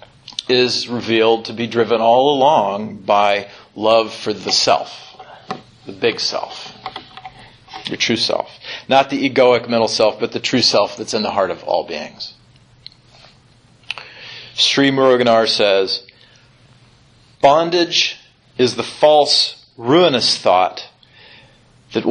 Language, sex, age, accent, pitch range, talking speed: English, male, 40-59, American, 115-130 Hz, 120 wpm